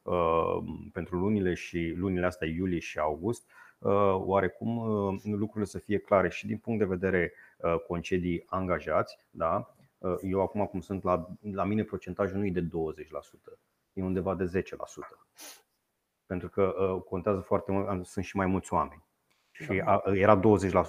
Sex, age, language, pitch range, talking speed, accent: male, 30-49, Romanian, 85-100 Hz, 140 wpm, native